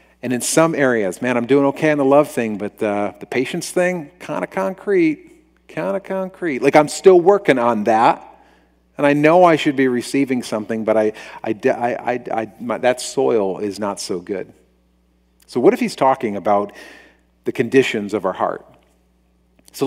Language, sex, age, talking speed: English, male, 40-59, 185 wpm